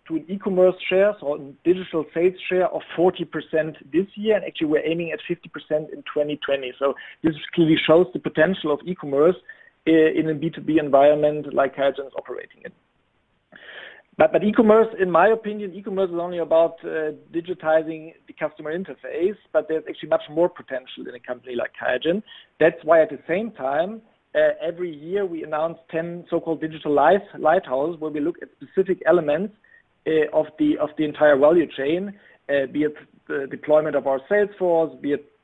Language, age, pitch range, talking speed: English, 50-69, 150-195 Hz, 180 wpm